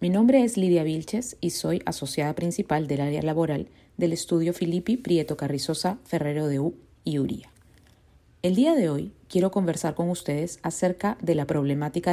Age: 40-59